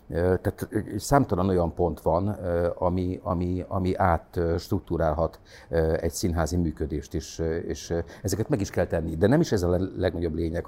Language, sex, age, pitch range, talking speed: English, male, 50-69, 85-100 Hz, 150 wpm